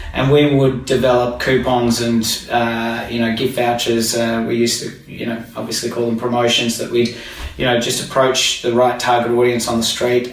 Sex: male